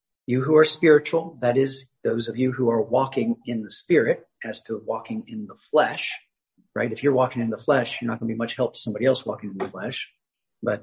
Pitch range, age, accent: 115-150 Hz, 40-59, American